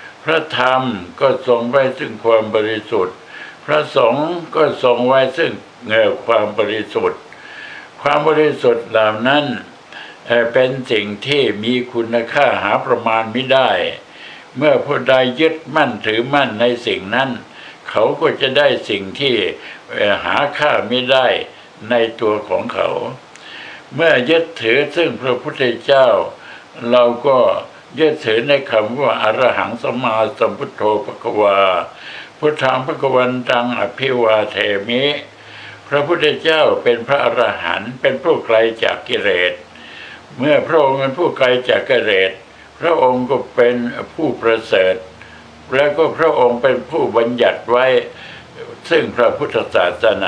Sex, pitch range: male, 115-145 Hz